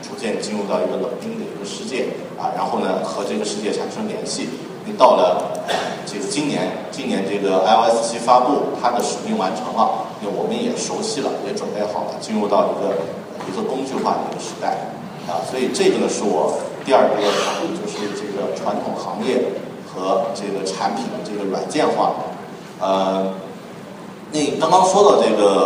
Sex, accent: male, native